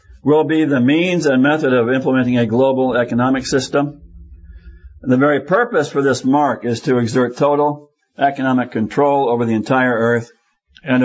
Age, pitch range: 60-79, 120-145 Hz